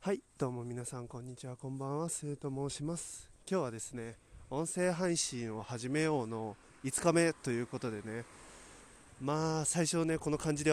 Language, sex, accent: Japanese, male, native